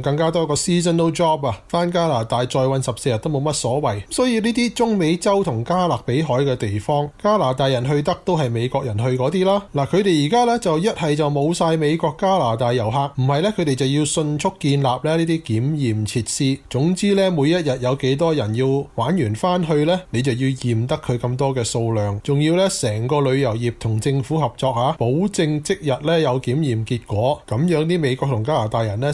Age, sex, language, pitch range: 20-39, male, Chinese, 125-165 Hz